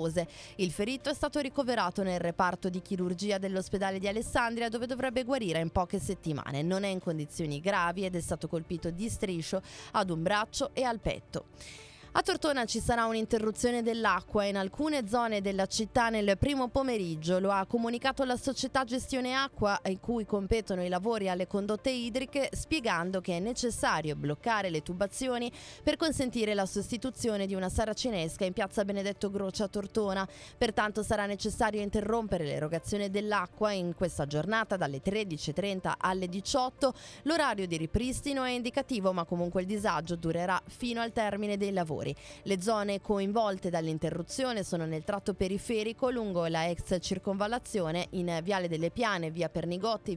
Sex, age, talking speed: female, 20-39, 155 wpm